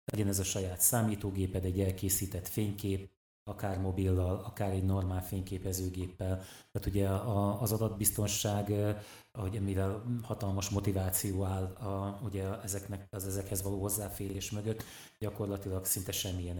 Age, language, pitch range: 30-49, Hungarian, 95-105 Hz